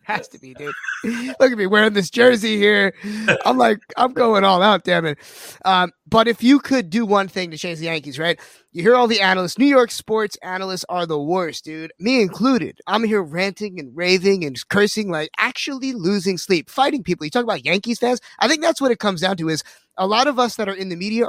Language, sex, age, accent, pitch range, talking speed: English, male, 20-39, American, 180-235 Hz, 235 wpm